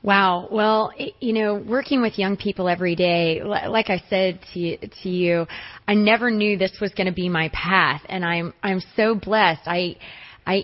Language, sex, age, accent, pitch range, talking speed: English, female, 30-49, American, 180-215 Hz, 185 wpm